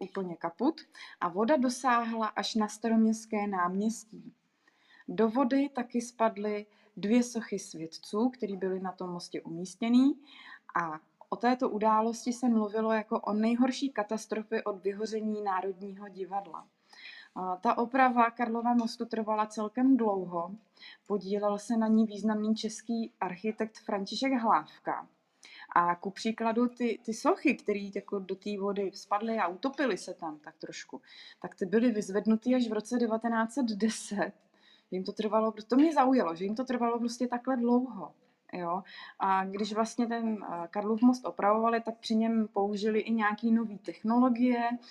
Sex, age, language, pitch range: female, 20-39, Czech, 200-235 Hz